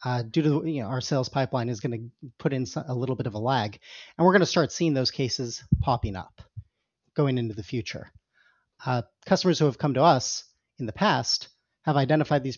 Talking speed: 210 wpm